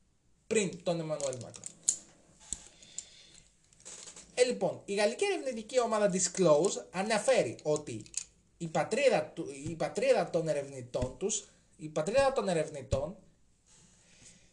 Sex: male